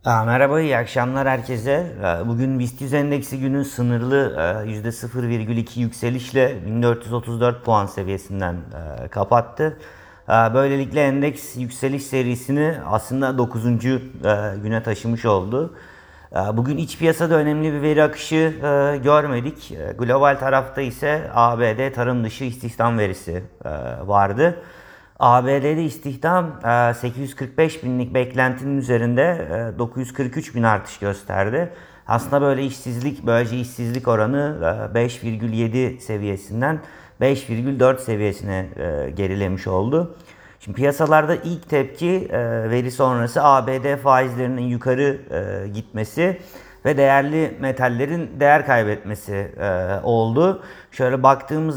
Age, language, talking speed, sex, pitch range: 50-69, Turkish, 95 wpm, male, 115-140 Hz